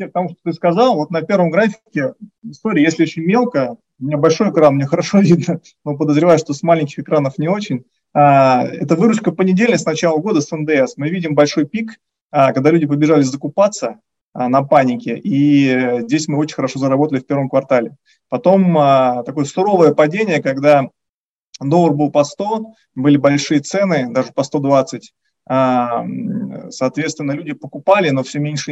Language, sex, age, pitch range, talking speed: Russian, male, 30-49, 140-170 Hz, 160 wpm